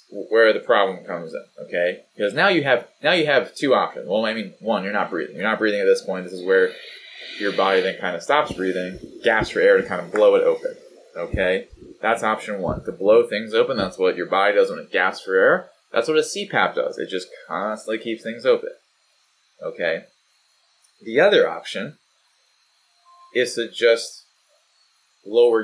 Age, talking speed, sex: 20-39, 195 wpm, male